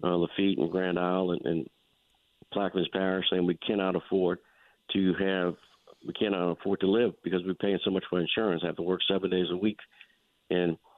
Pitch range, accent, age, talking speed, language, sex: 90-95 Hz, American, 50-69, 200 wpm, English, male